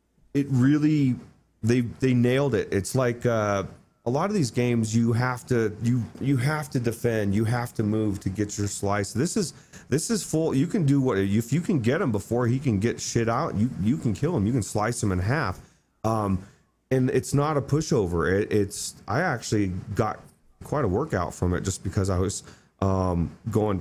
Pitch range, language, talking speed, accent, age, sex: 100-135 Hz, English, 210 wpm, American, 30-49, male